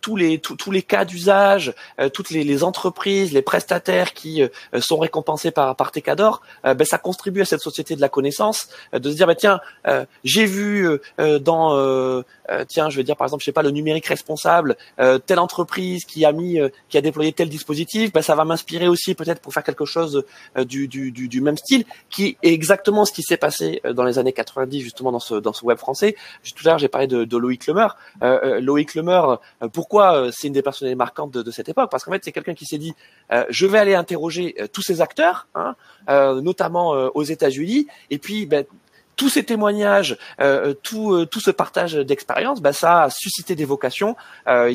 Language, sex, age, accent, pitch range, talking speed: French, male, 20-39, French, 135-185 Hz, 230 wpm